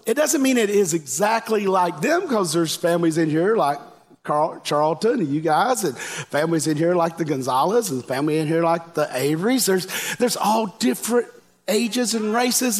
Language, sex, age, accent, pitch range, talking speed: English, male, 50-69, American, 160-225 Hz, 190 wpm